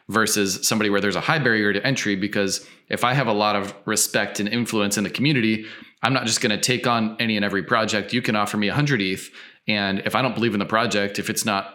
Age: 20-39